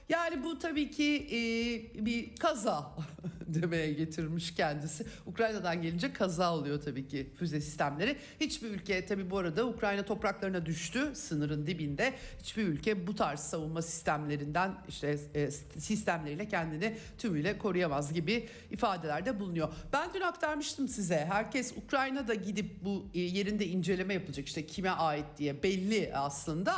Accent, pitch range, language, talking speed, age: native, 155-225 Hz, Turkish, 130 wpm, 60-79